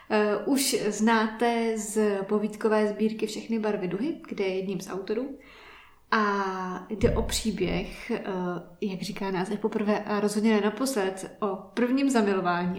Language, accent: Czech, native